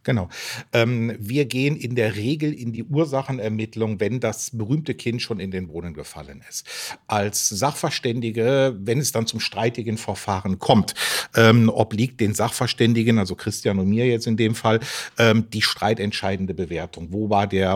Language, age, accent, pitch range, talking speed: German, 50-69, German, 100-120 Hz, 150 wpm